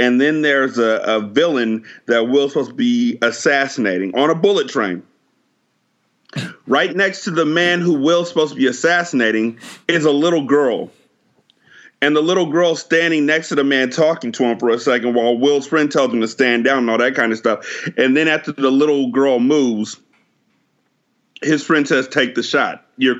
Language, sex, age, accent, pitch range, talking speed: English, male, 30-49, American, 130-180 Hz, 195 wpm